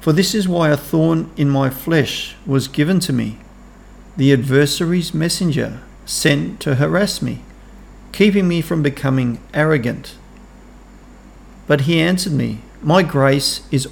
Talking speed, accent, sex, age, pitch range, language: 140 wpm, Australian, male, 50-69, 125-160 Hz, English